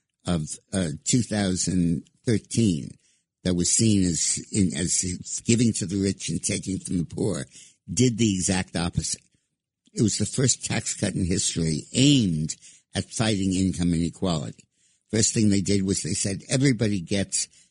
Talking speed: 150 wpm